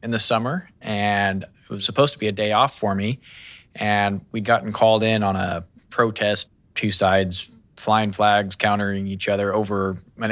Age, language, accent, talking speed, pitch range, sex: 20-39, English, American, 180 wpm, 100-110 Hz, male